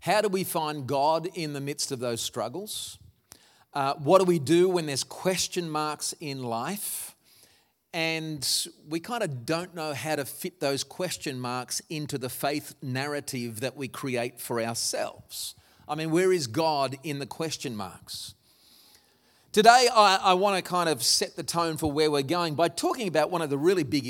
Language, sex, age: English, male, 40-59